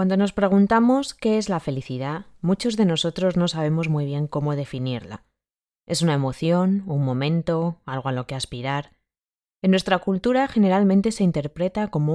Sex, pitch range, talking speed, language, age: female, 140-195 Hz, 165 wpm, Spanish, 20-39